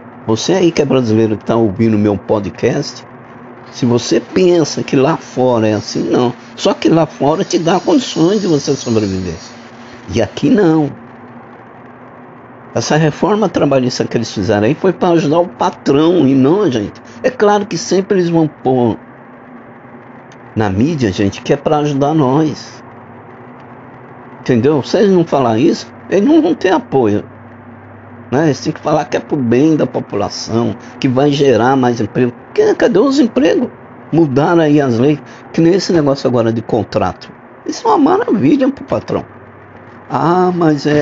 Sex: male